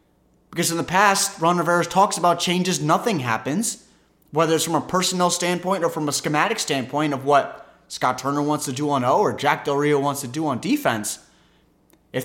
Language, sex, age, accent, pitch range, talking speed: English, male, 30-49, American, 140-190 Hz, 200 wpm